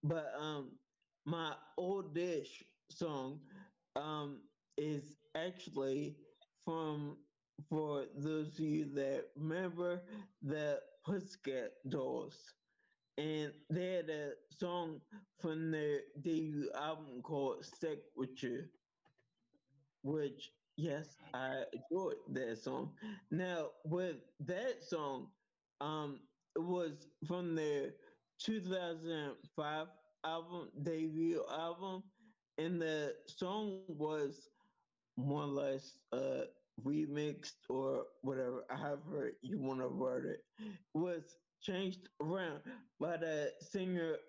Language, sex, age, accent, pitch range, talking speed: English, male, 20-39, American, 145-180 Hz, 100 wpm